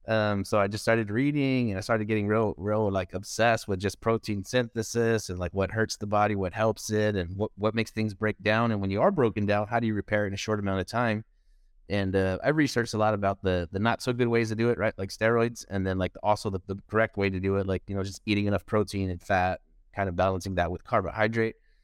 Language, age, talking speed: English, 30-49, 260 wpm